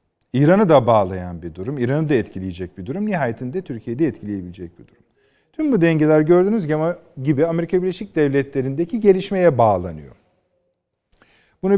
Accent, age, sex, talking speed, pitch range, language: native, 40-59, male, 130 wpm, 115-170 Hz, Turkish